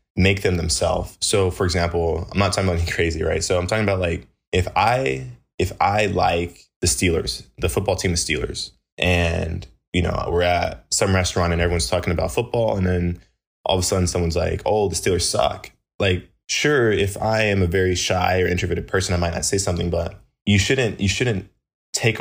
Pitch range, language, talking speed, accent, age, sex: 85-100 Hz, English, 205 wpm, American, 20-39, male